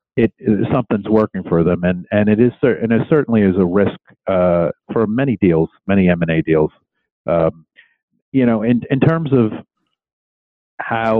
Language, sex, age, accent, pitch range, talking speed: English, male, 50-69, American, 85-105 Hz, 170 wpm